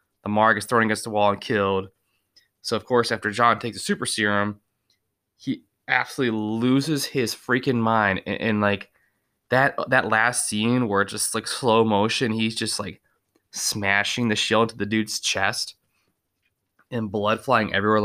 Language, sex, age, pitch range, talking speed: English, male, 20-39, 100-120 Hz, 165 wpm